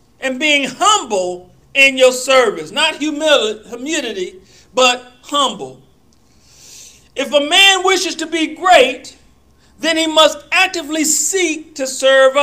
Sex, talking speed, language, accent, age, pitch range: male, 115 wpm, English, American, 40-59, 225-325 Hz